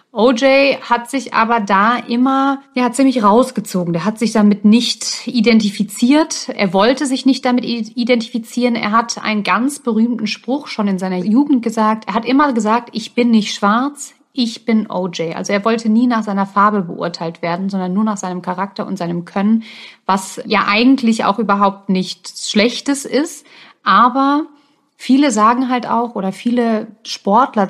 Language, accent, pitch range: German, German, 200-240 Hz